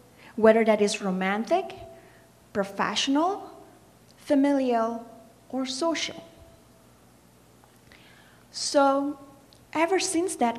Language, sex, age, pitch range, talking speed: English, female, 30-49, 200-285 Hz, 70 wpm